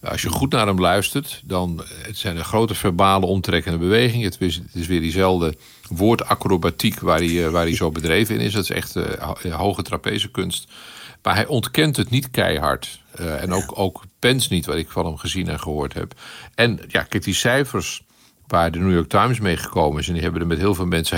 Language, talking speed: Dutch, 215 wpm